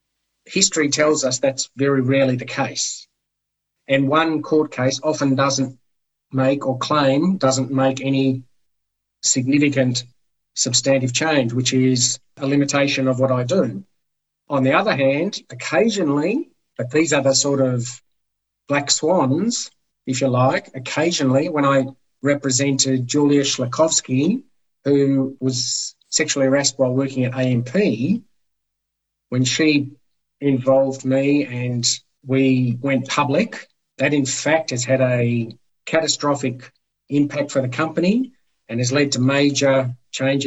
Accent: Australian